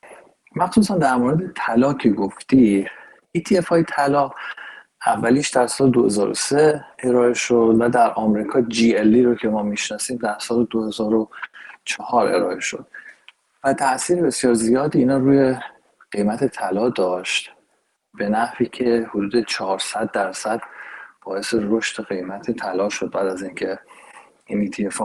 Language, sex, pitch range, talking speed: Persian, male, 110-135 Hz, 125 wpm